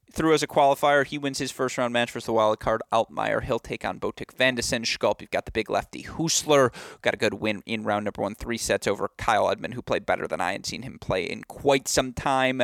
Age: 30-49